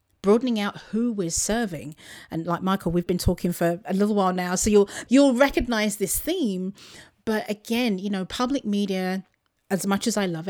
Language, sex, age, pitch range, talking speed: English, female, 40-59, 160-200 Hz, 190 wpm